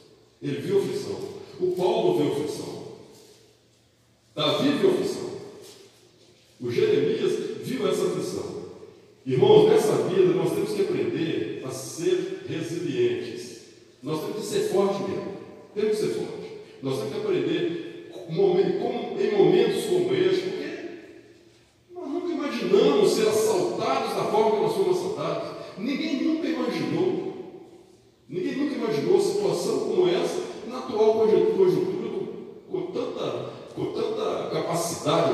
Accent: Brazilian